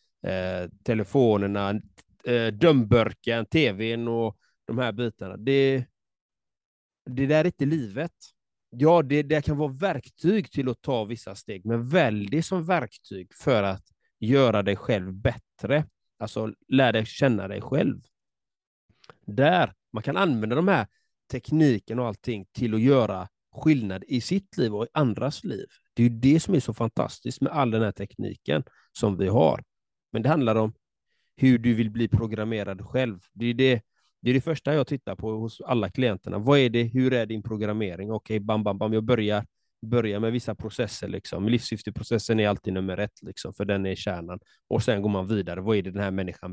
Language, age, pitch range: Swedish, 30-49, 105-130 Hz